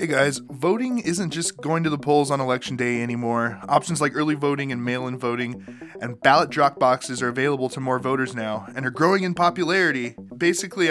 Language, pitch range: English, 125-160 Hz